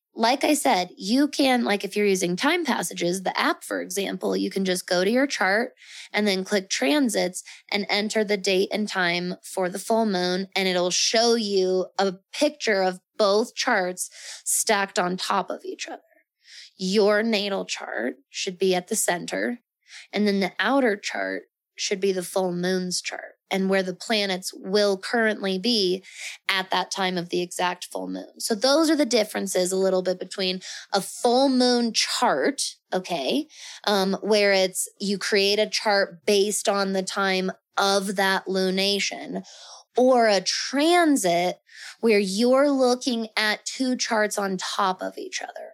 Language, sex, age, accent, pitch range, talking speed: English, female, 20-39, American, 190-225 Hz, 165 wpm